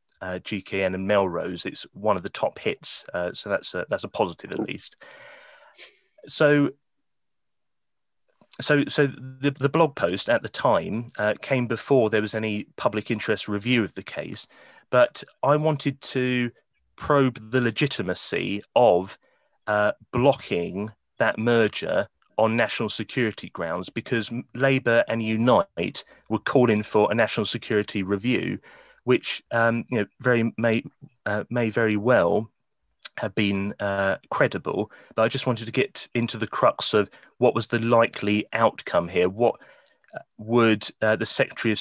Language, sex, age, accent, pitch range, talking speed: English, male, 30-49, British, 105-125 Hz, 145 wpm